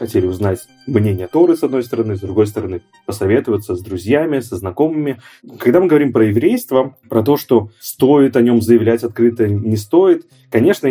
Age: 20-39